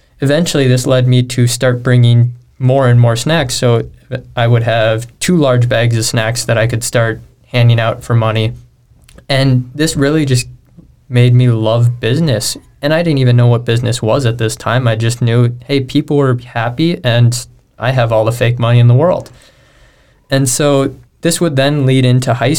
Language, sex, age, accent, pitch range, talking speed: English, male, 20-39, American, 115-130 Hz, 190 wpm